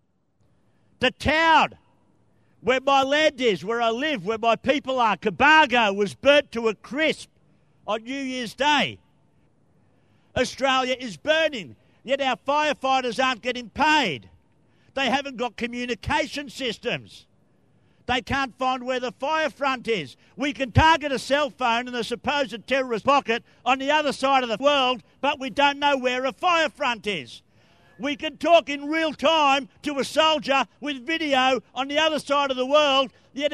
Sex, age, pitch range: male, 50-69, 225-280 Hz